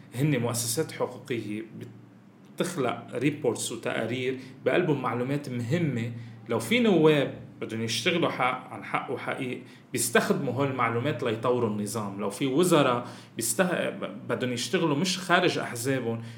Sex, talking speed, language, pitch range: male, 110 wpm, English, 120-165 Hz